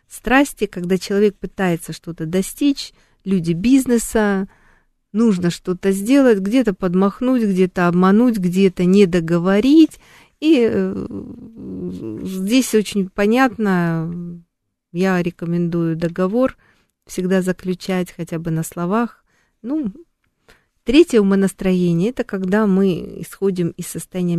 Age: 40-59